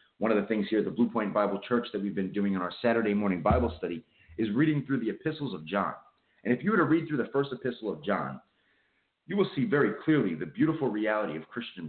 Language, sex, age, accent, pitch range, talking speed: English, male, 30-49, American, 100-135 Hz, 250 wpm